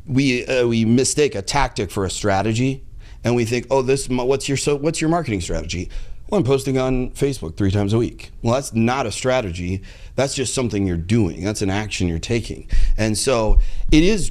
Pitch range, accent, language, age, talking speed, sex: 105-130 Hz, American, English, 30-49, 205 wpm, male